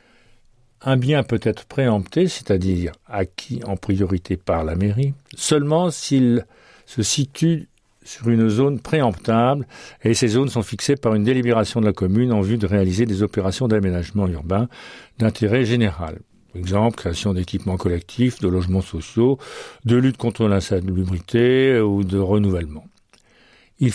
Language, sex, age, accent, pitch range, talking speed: French, male, 50-69, French, 100-120 Hz, 145 wpm